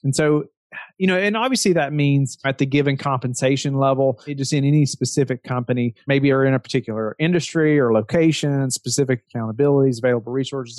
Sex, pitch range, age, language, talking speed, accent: male, 130-155 Hz, 30-49, English, 165 wpm, American